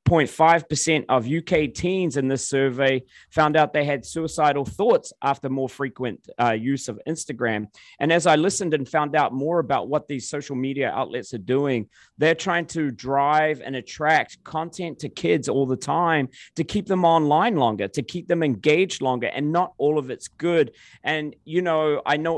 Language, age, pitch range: English, 30-49, 135-165 Hz